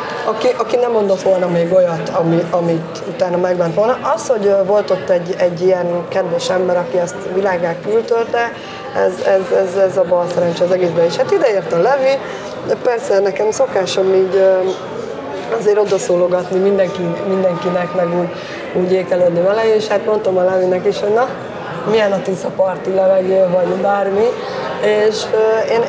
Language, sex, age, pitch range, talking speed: Hungarian, female, 20-39, 180-210 Hz, 160 wpm